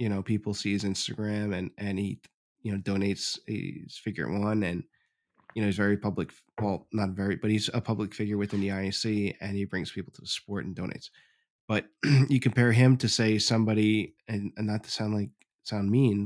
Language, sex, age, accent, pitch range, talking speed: English, male, 20-39, American, 100-115 Hz, 205 wpm